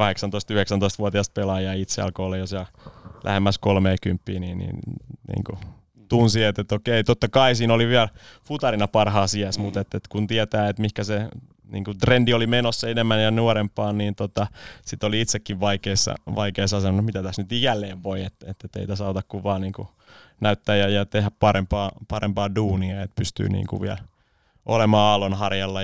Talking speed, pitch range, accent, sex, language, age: 175 wpm, 95-110 Hz, native, male, Finnish, 20-39